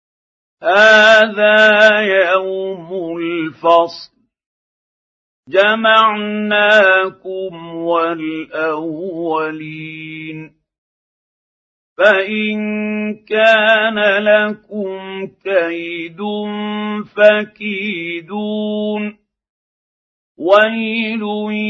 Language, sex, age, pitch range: Arabic, male, 50-69, 165-210 Hz